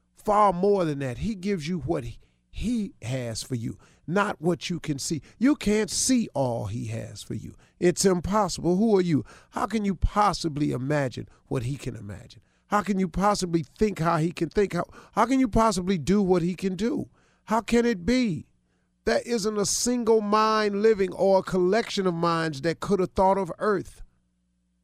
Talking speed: 195 wpm